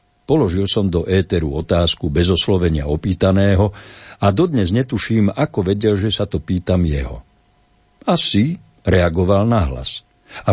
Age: 60-79